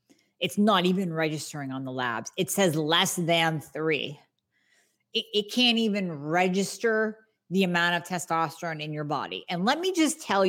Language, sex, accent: English, female, American